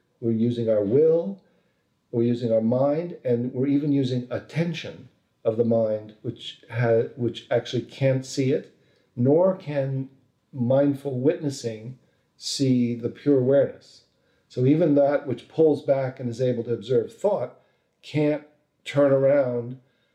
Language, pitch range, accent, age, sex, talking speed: English, 120-145 Hz, American, 50-69, male, 135 wpm